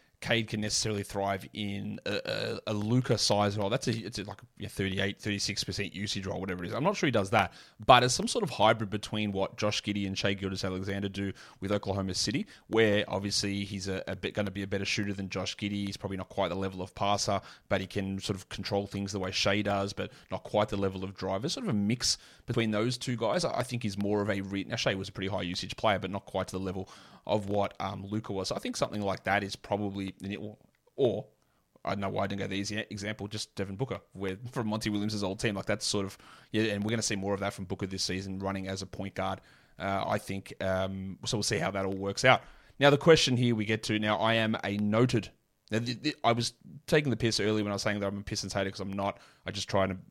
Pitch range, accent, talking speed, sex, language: 95-110 Hz, Australian, 265 wpm, male, English